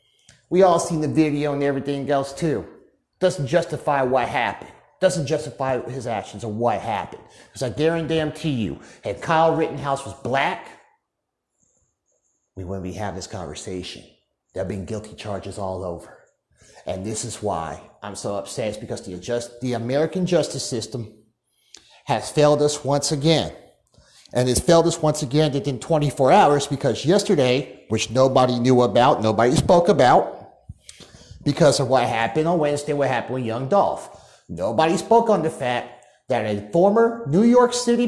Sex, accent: male, American